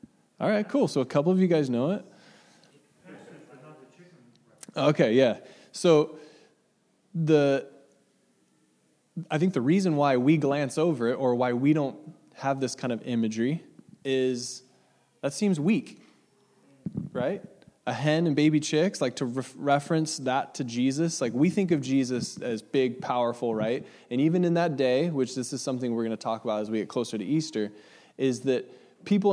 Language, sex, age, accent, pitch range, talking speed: English, male, 20-39, American, 125-150 Hz, 165 wpm